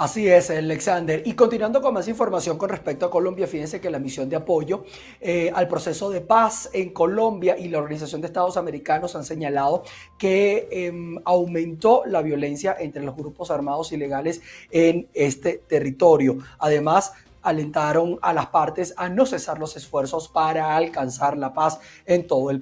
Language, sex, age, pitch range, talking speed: Spanish, male, 30-49, 150-185 Hz, 165 wpm